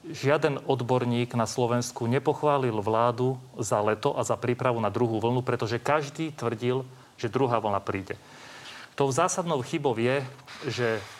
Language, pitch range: Slovak, 120-150 Hz